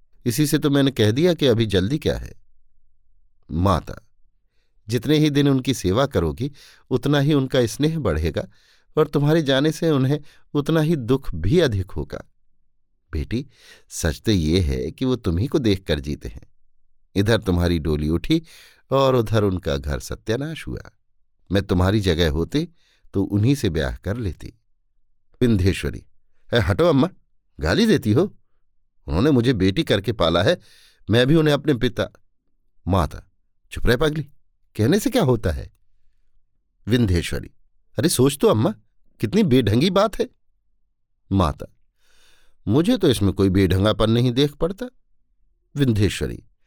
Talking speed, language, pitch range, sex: 145 wpm, Hindi, 90-135 Hz, male